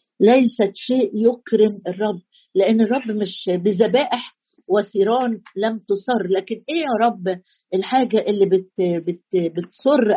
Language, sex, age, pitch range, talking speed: Arabic, female, 50-69, 200-245 Hz, 110 wpm